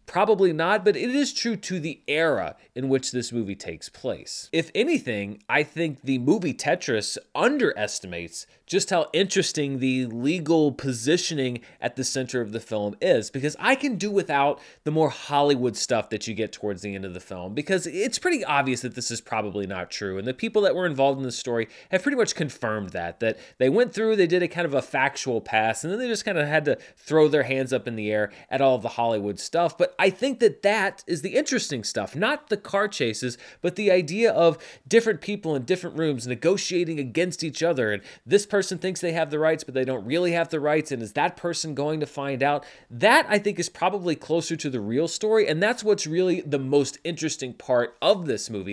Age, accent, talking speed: 30-49, American, 225 wpm